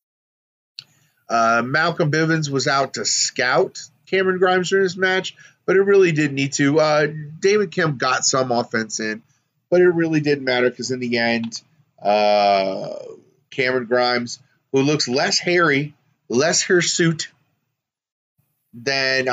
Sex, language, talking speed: male, English, 140 wpm